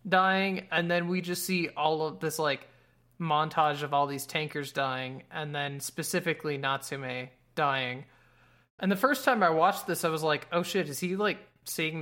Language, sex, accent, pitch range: English, male, American, 140-180 Hz